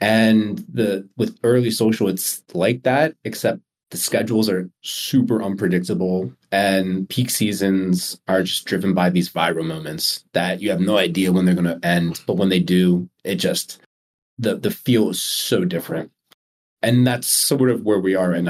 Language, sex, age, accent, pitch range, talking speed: English, male, 30-49, American, 95-130 Hz, 175 wpm